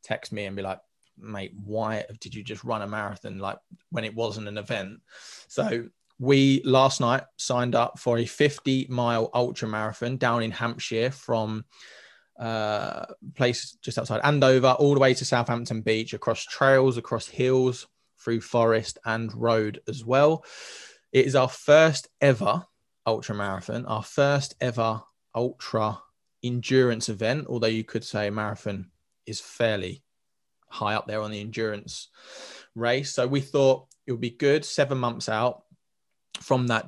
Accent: British